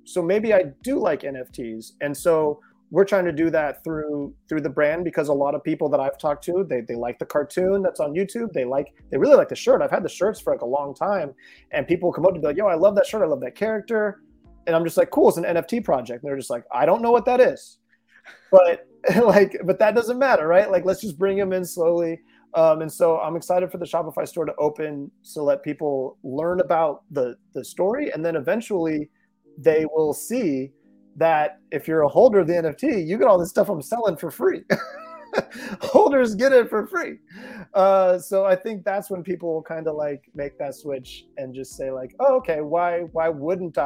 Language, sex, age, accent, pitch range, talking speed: English, male, 30-49, American, 140-195 Hz, 230 wpm